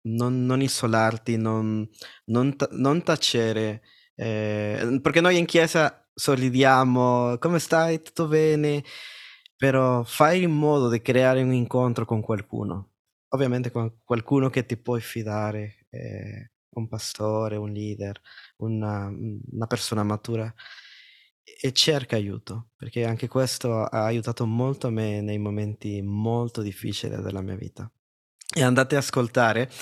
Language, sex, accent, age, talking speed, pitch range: Italian, male, native, 20-39, 130 wpm, 105-135 Hz